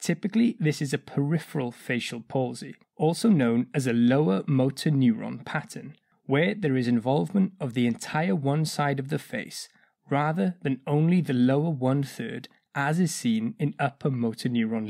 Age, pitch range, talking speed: 20-39, 125-180 Hz, 165 wpm